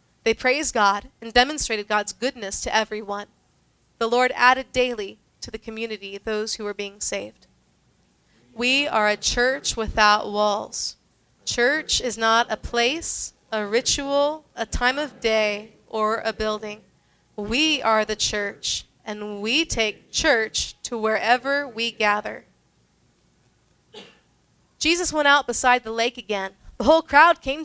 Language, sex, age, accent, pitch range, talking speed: English, female, 30-49, American, 215-265 Hz, 140 wpm